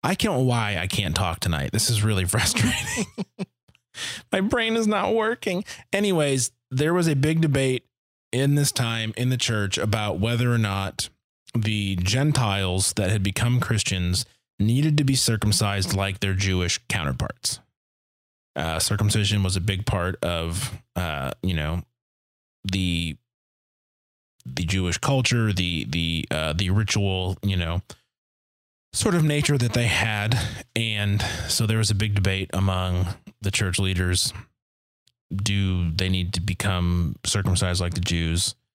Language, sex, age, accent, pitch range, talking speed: English, male, 20-39, American, 90-115 Hz, 145 wpm